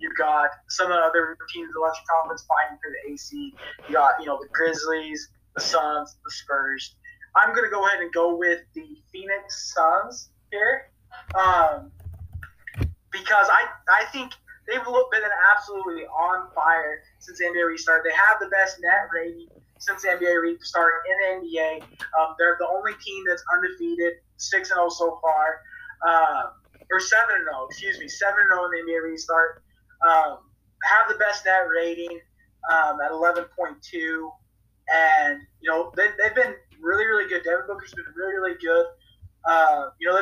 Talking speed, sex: 165 wpm, male